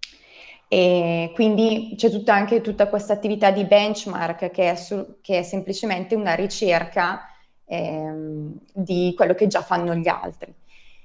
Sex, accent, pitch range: female, native, 175-215 Hz